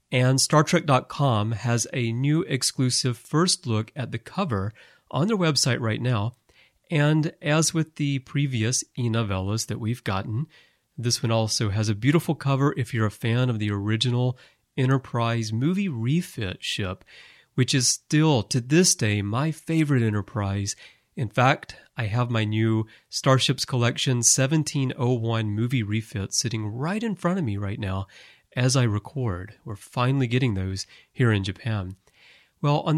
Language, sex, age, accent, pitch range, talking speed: English, male, 30-49, American, 110-145 Hz, 150 wpm